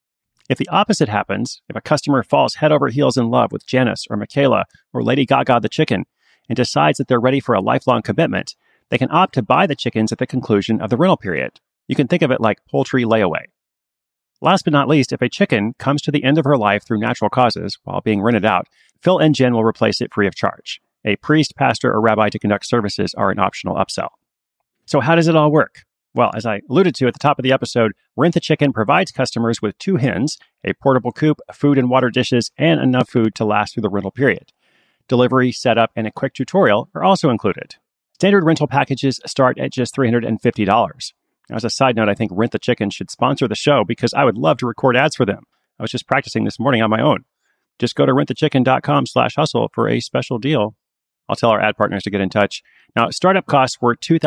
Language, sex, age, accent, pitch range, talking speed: English, male, 30-49, American, 110-140 Hz, 230 wpm